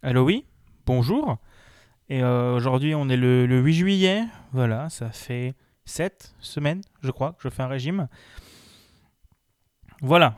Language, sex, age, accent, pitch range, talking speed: French, male, 20-39, French, 120-155 Hz, 145 wpm